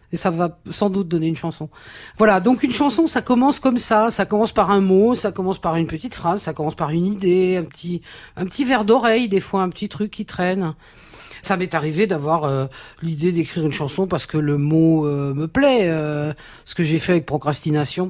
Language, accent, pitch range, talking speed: French, French, 150-195 Hz, 225 wpm